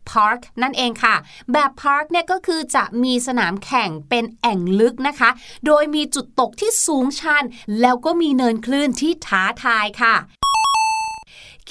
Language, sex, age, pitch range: Thai, female, 20-39, 225-295 Hz